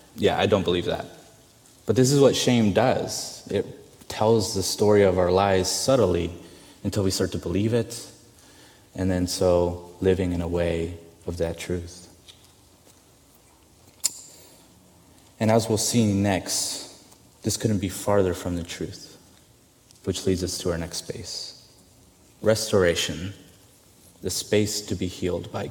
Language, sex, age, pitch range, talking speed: English, male, 30-49, 90-110 Hz, 140 wpm